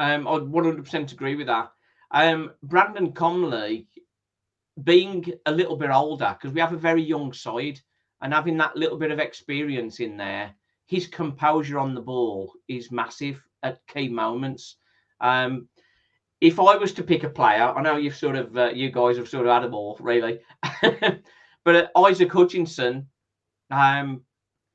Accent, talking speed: British, 160 wpm